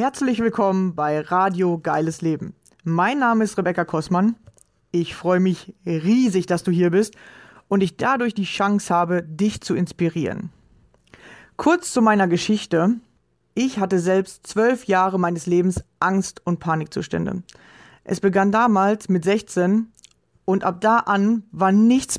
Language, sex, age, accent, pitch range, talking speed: German, female, 30-49, German, 180-215 Hz, 145 wpm